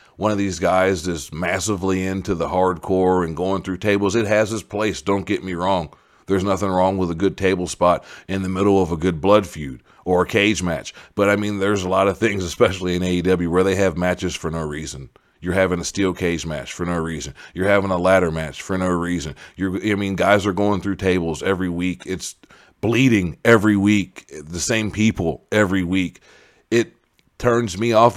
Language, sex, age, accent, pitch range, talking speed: English, male, 40-59, American, 90-105 Hz, 210 wpm